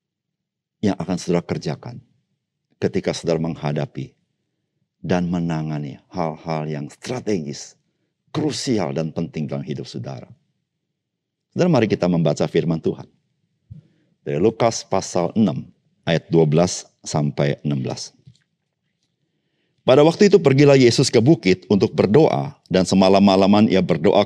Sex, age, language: male, 50-69, Indonesian